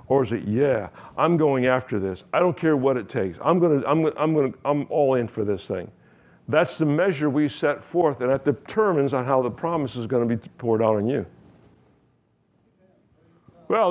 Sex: male